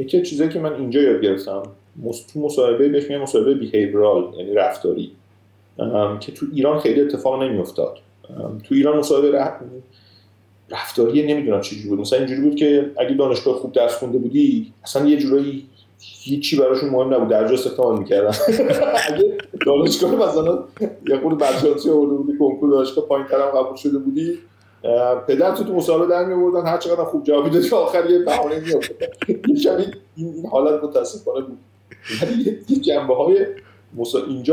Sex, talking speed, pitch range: male, 160 wpm, 110-155 Hz